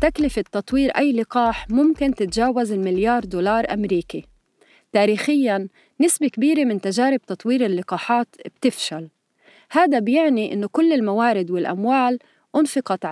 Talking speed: 110 wpm